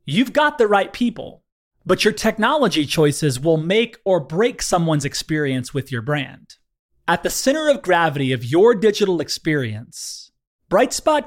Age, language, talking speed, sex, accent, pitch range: 30-49, English, 150 wpm, male, American, 140-215 Hz